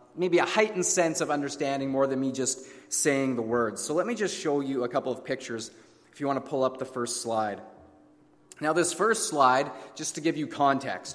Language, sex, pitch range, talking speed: English, male, 120-160 Hz, 220 wpm